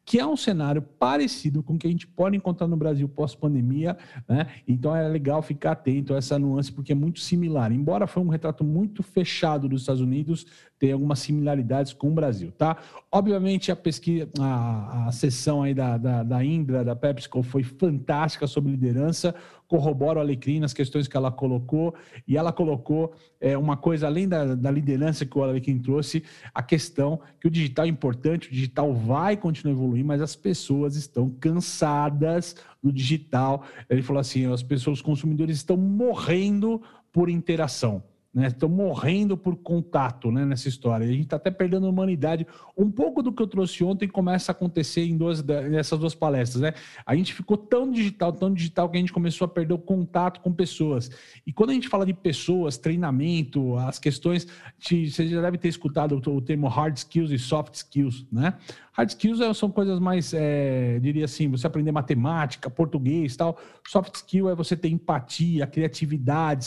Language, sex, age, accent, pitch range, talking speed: Portuguese, male, 50-69, Brazilian, 140-175 Hz, 185 wpm